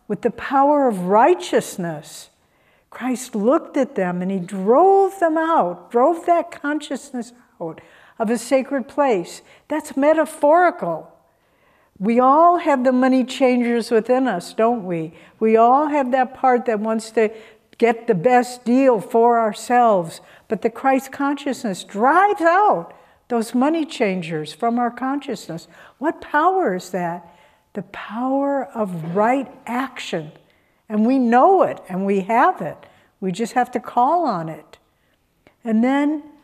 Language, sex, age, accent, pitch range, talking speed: English, female, 60-79, American, 210-270 Hz, 140 wpm